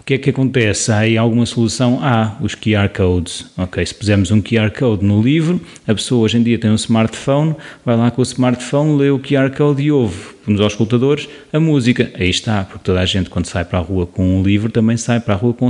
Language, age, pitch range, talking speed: Portuguese, 30-49, 100-130 Hz, 250 wpm